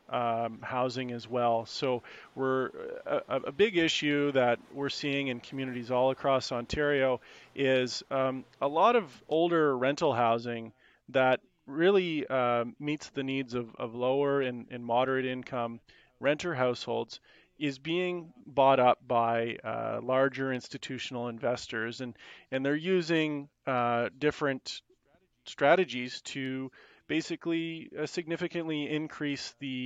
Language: English